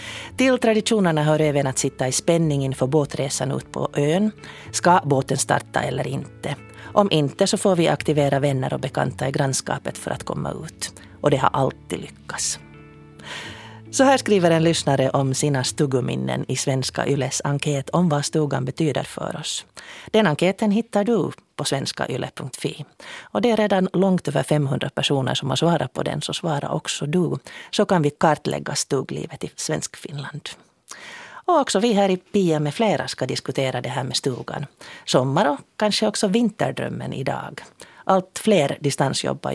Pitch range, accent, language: 130-195 Hz, native, Finnish